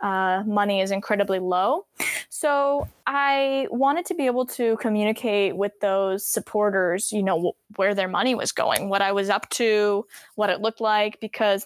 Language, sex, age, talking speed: English, female, 10-29, 175 wpm